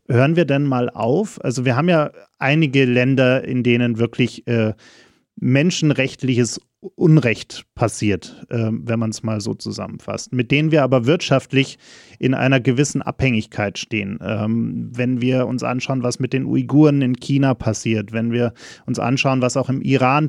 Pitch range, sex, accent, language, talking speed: 120-135 Hz, male, German, German, 165 wpm